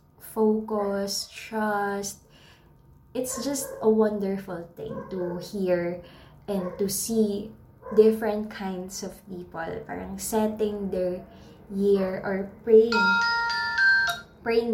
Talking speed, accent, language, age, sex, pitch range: 95 wpm, native, Filipino, 20-39, female, 185-230 Hz